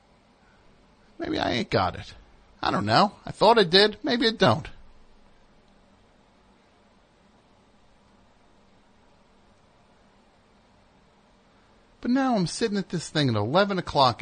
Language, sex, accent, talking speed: English, male, American, 105 wpm